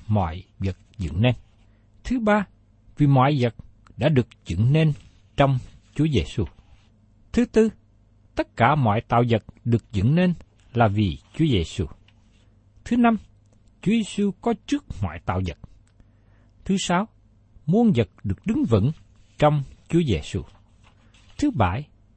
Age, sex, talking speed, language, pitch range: 60-79, male, 140 wpm, Vietnamese, 100-150 Hz